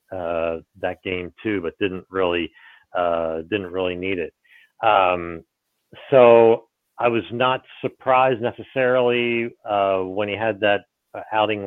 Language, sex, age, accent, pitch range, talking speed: English, male, 40-59, American, 90-110 Hz, 130 wpm